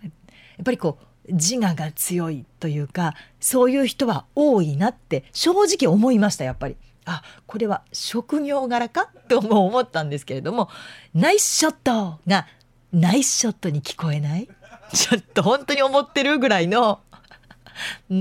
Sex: female